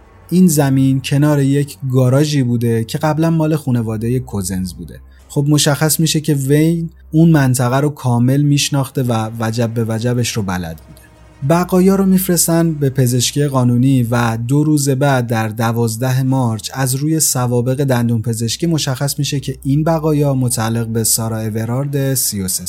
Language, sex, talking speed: Persian, male, 150 wpm